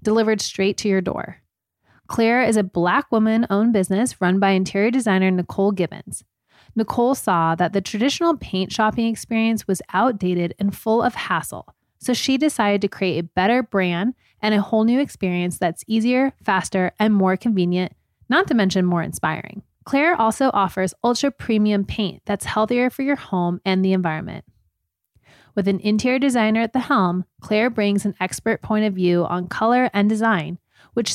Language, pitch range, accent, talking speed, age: English, 185-230 Hz, American, 170 wpm, 20-39